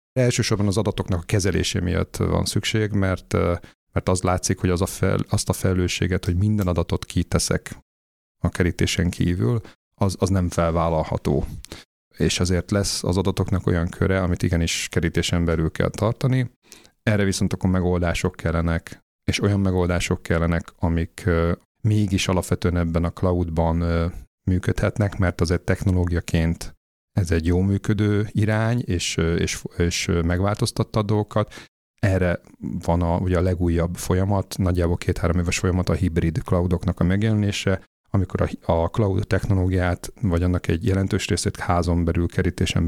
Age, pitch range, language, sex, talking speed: 30-49, 85-100 Hz, Hungarian, male, 145 wpm